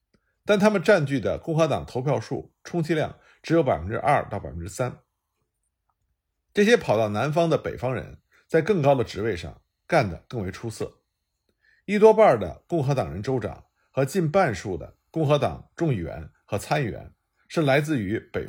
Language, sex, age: Chinese, male, 50-69